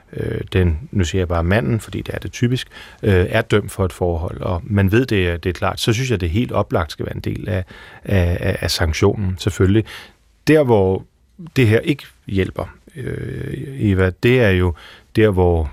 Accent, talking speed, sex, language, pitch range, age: native, 200 wpm, male, Danish, 95-115 Hz, 30-49